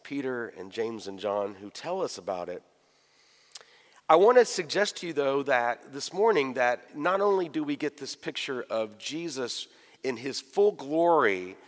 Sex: male